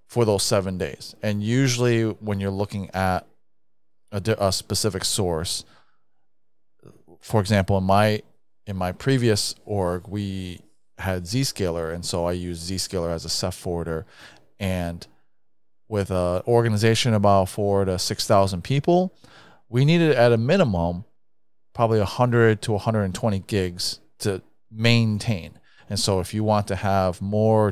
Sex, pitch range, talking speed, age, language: male, 90-110 Hz, 145 wpm, 30-49, English